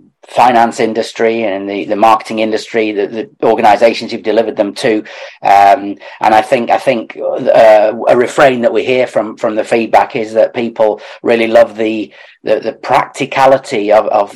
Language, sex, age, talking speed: English, male, 40-59, 175 wpm